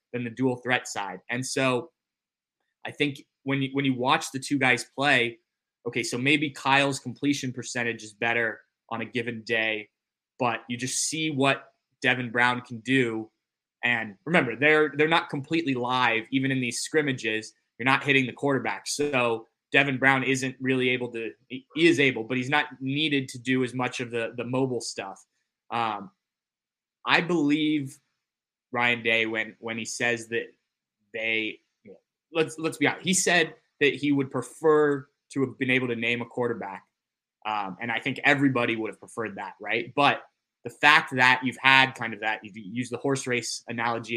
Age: 20-39